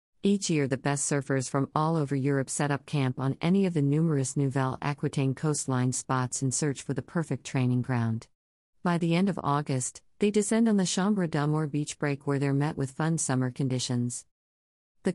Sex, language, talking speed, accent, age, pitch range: female, English, 195 wpm, American, 50-69, 130-155 Hz